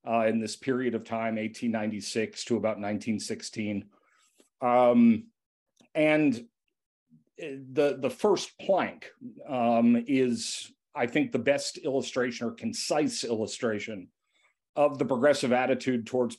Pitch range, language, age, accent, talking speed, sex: 115-135 Hz, English, 40-59, American, 115 wpm, male